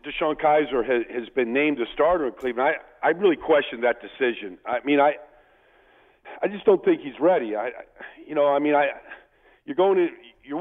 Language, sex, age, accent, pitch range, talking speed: English, male, 50-69, American, 125-150 Hz, 200 wpm